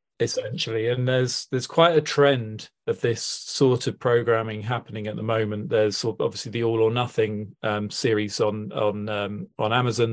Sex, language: male, English